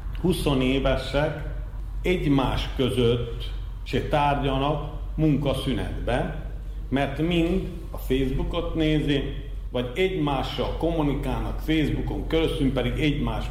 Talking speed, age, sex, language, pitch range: 80 wpm, 50-69, male, Hungarian, 110-155 Hz